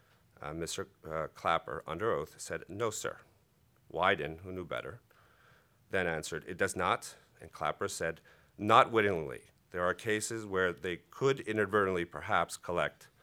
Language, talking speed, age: English, 145 wpm, 40-59